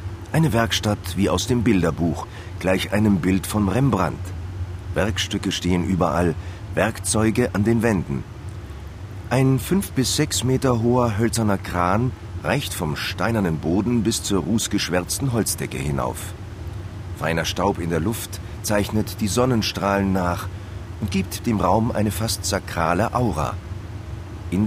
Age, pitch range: 40-59, 90-115 Hz